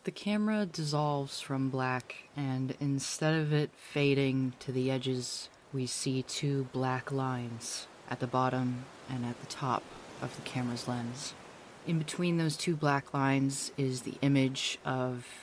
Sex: female